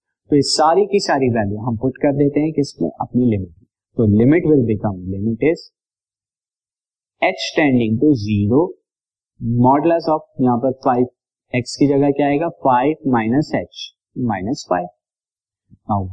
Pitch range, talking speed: 110-145 Hz, 140 wpm